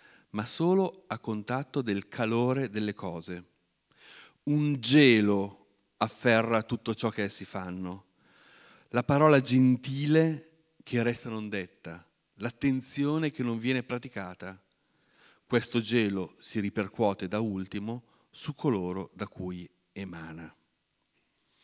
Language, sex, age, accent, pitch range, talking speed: Italian, male, 50-69, native, 105-145 Hz, 110 wpm